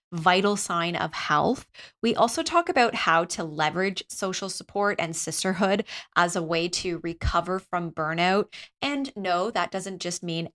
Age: 20-39